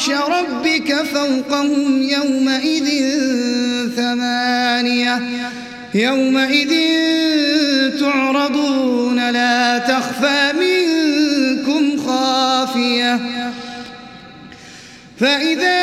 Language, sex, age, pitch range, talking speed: Arabic, male, 30-49, 260-325 Hz, 45 wpm